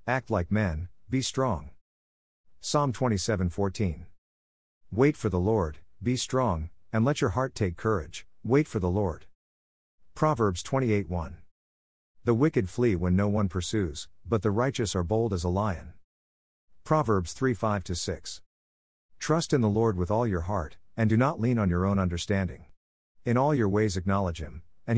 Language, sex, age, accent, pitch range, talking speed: English, male, 50-69, American, 85-115 Hz, 165 wpm